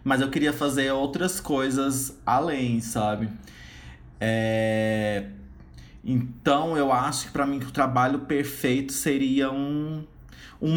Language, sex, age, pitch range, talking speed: Portuguese, male, 20-39, 115-145 Hz, 125 wpm